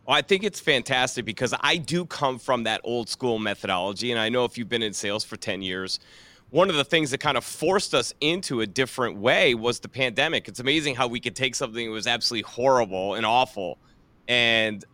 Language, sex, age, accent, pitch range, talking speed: English, male, 30-49, American, 115-155 Hz, 220 wpm